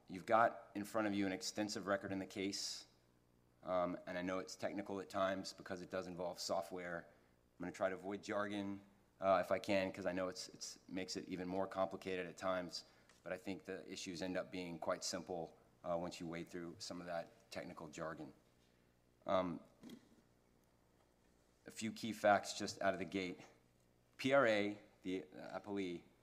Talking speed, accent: 190 wpm, American